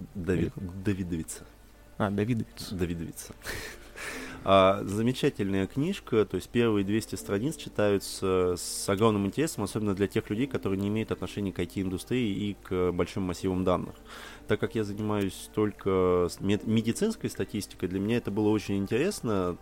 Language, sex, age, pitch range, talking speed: Russian, male, 20-39, 95-110 Hz, 135 wpm